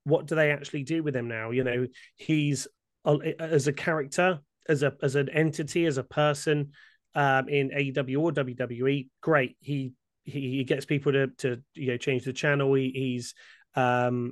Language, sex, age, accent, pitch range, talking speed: English, male, 30-49, British, 130-145 Hz, 180 wpm